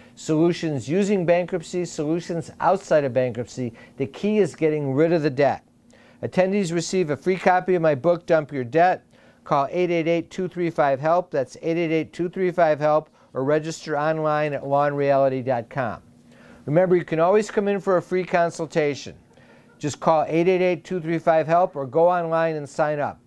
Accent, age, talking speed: American, 50-69, 140 wpm